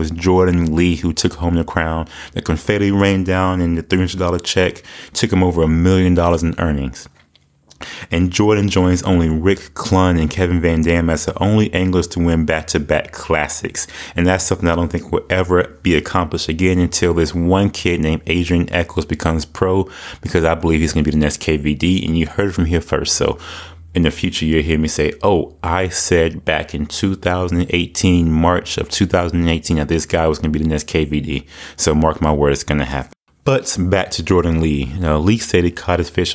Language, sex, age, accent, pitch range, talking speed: English, male, 30-49, American, 80-90 Hz, 210 wpm